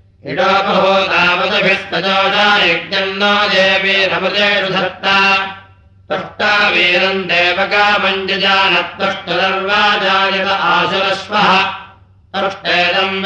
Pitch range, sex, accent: 180-195 Hz, male, Indian